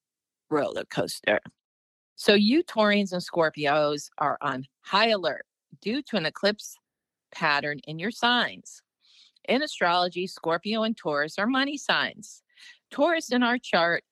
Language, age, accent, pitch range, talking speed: English, 40-59, American, 165-225 Hz, 130 wpm